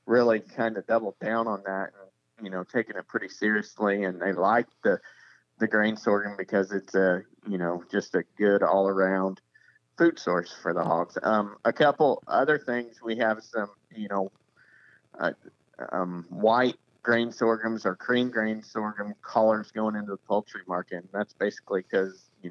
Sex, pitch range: male, 95-115 Hz